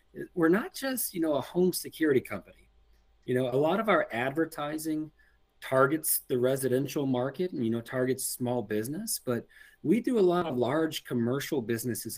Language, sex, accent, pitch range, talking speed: English, male, American, 115-130 Hz, 170 wpm